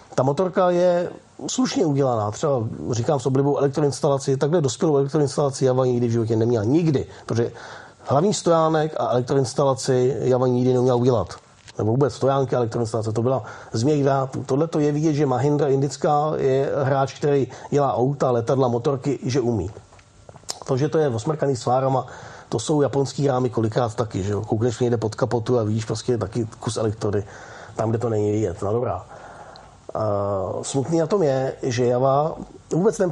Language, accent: Czech, native